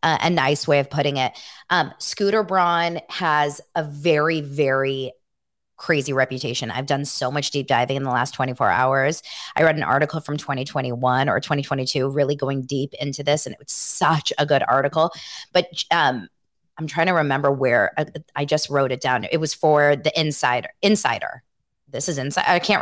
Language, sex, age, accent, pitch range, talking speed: English, female, 20-39, American, 145-185 Hz, 185 wpm